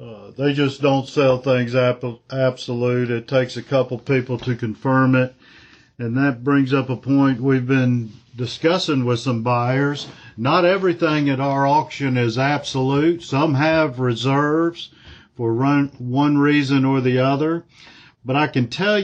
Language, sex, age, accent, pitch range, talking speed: English, male, 50-69, American, 120-140 Hz, 150 wpm